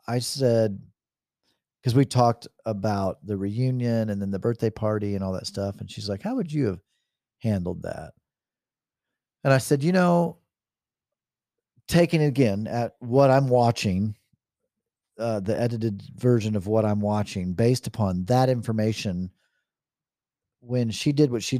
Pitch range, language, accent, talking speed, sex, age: 105-135 Hz, English, American, 155 wpm, male, 40-59